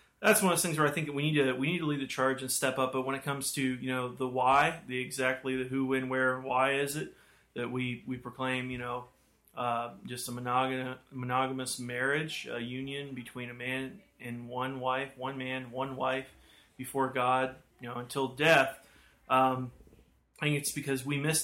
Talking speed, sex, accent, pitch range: 210 wpm, male, American, 130-140 Hz